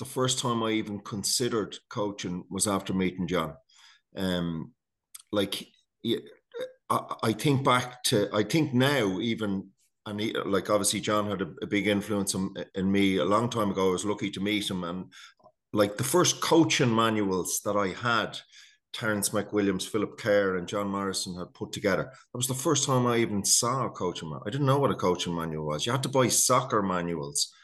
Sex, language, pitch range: male, English, 95-115 Hz